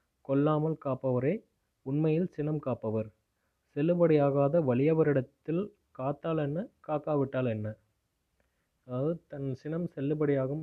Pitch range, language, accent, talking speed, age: 125-155 Hz, Tamil, native, 85 wpm, 20-39